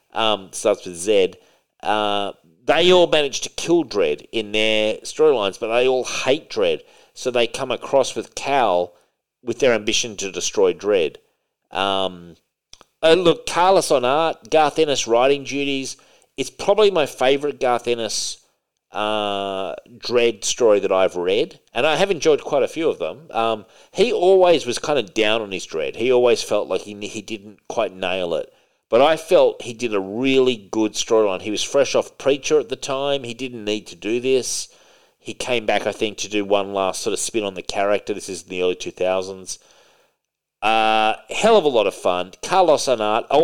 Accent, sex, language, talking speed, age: Australian, male, English, 185 wpm, 40-59